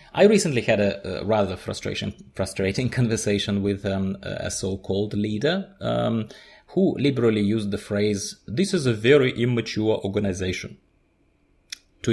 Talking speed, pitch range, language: 130 wpm, 100-115 Hz, English